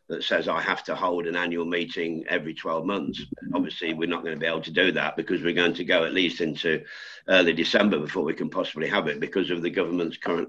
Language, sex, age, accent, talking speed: English, male, 50-69, British, 245 wpm